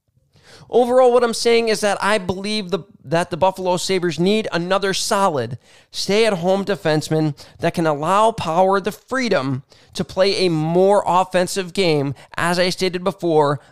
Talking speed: 150 wpm